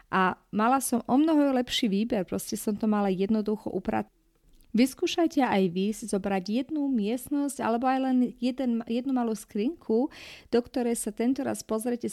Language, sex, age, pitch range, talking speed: Slovak, female, 30-49, 195-245 Hz, 160 wpm